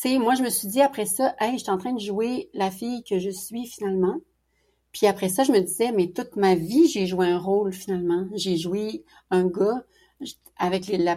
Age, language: 40-59, English